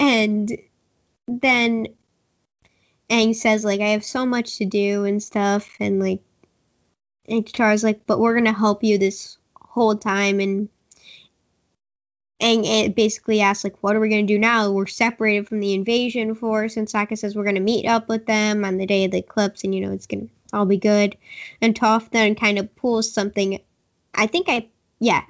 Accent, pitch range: American, 200-225 Hz